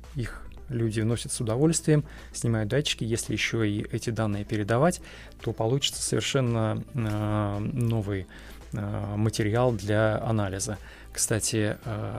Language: Russian